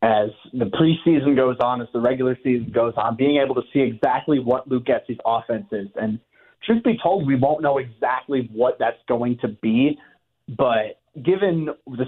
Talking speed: 185 wpm